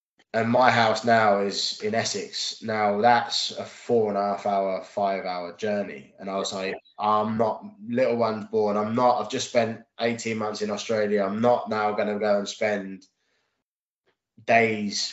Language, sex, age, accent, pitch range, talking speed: English, male, 20-39, British, 100-115 Hz, 180 wpm